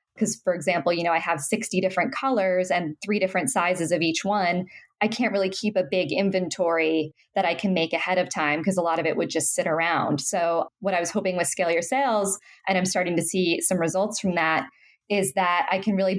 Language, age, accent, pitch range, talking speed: English, 20-39, American, 165-195 Hz, 235 wpm